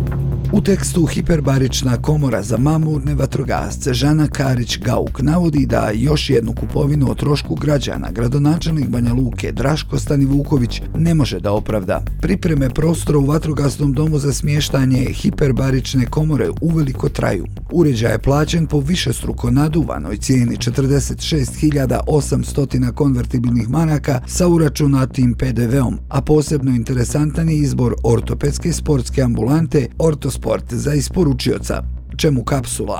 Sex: male